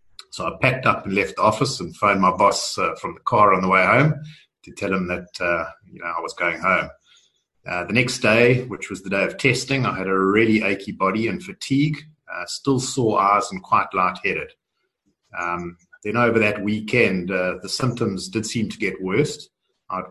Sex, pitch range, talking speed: male, 95-130 Hz, 210 wpm